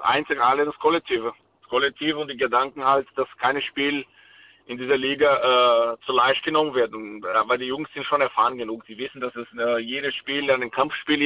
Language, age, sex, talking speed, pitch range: German, 50-69, male, 195 wpm, 135-165 Hz